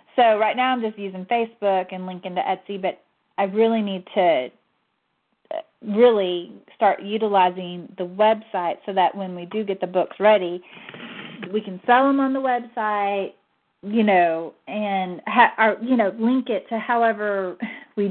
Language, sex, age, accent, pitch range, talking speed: English, female, 30-49, American, 190-240 Hz, 160 wpm